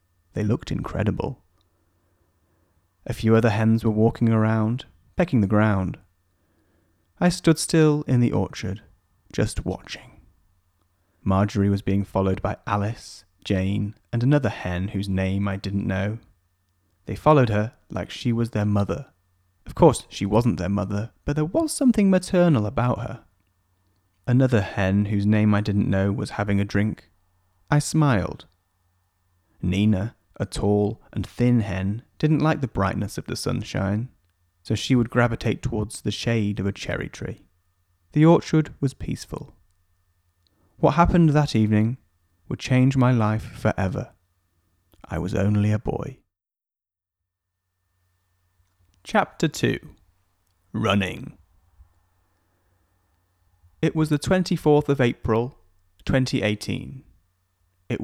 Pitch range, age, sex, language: 90-115 Hz, 30-49, male, English